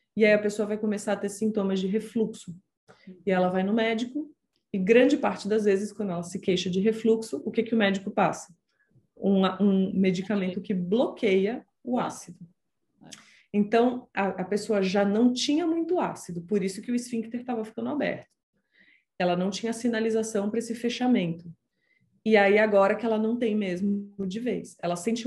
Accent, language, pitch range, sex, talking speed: Brazilian, Portuguese, 190-230 Hz, female, 180 wpm